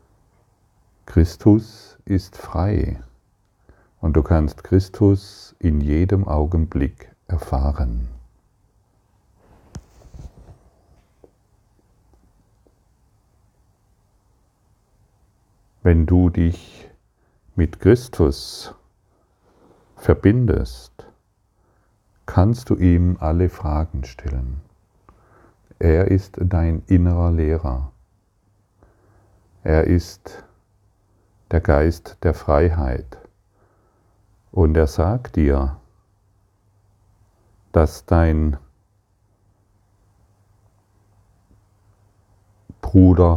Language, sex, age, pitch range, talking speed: German, male, 50-69, 80-100 Hz, 60 wpm